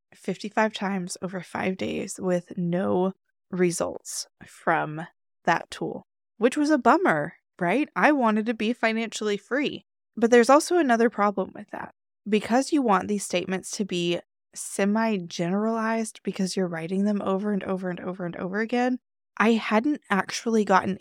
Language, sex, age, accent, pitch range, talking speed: English, female, 20-39, American, 185-230 Hz, 150 wpm